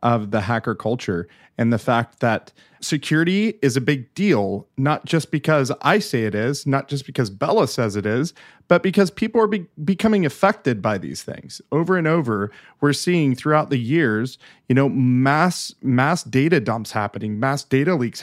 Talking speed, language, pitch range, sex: 180 wpm, English, 125-170 Hz, male